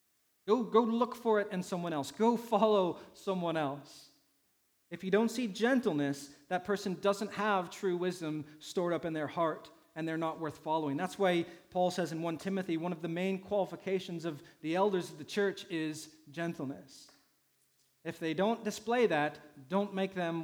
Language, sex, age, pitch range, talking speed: English, male, 40-59, 155-195 Hz, 180 wpm